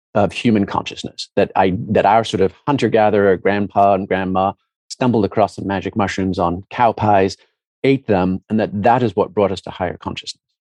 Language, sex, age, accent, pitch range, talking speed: English, male, 40-59, American, 105-135 Hz, 190 wpm